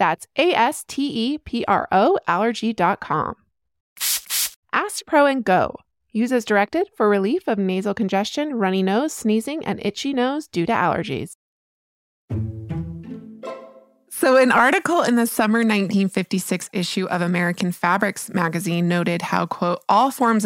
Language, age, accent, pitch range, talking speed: English, 20-39, American, 175-225 Hz, 120 wpm